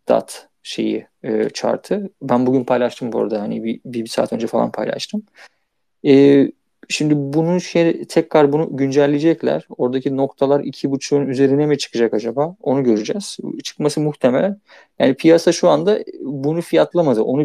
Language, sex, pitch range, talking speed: Turkish, male, 120-160 Hz, 140 wpm